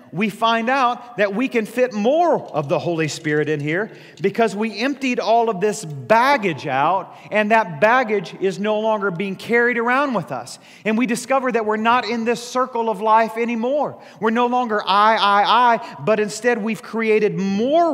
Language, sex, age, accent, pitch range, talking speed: English, male, 40-59, American, 195-245 Hz, 185 wpm